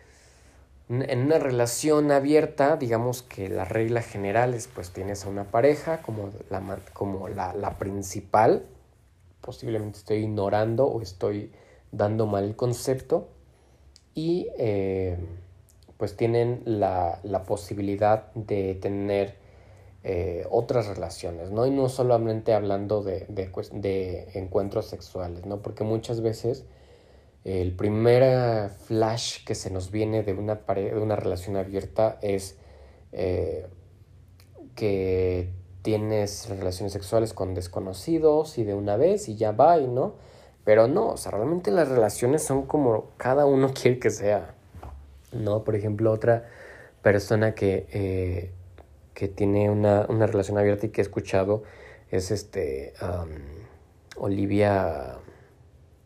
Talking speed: 125 wpm